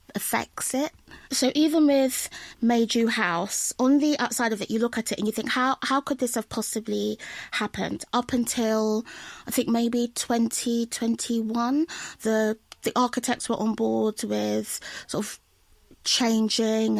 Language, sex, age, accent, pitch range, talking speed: English, female, 20-39, British, 220-255 Hz, 150 wpm